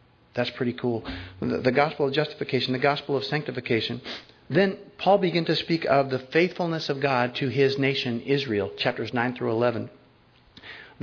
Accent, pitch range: American, 120-150 Hz